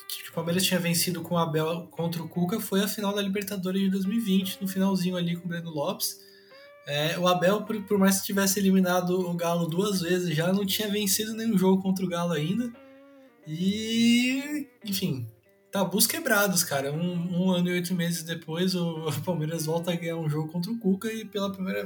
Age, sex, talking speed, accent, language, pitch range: 20-39, male, 195 wpm, Brazilian, Portuguese, 170-200 Hz